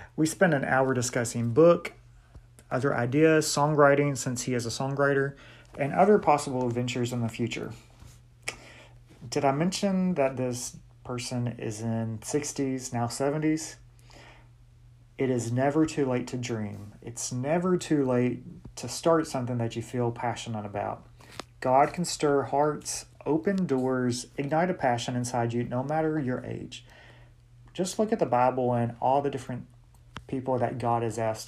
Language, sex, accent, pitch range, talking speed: English, male, American, 120-145 Hz, 155 wpm